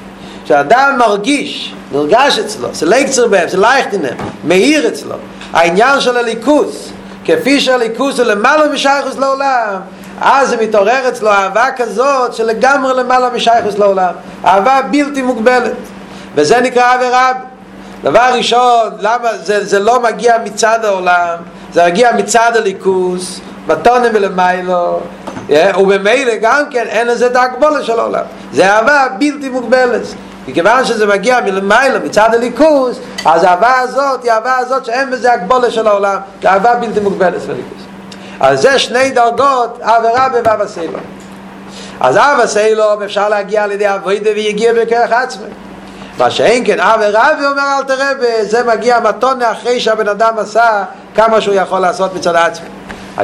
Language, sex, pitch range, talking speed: Hebrew, male, 210-255 Hz, 145 wpm